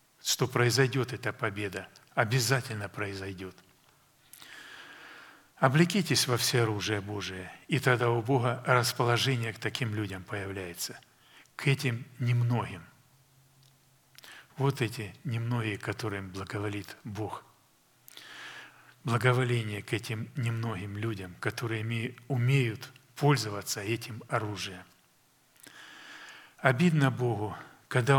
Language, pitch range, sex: Russian, 110-135 Hz, male